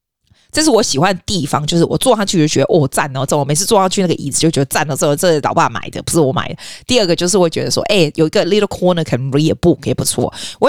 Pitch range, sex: 140-195 Hz, female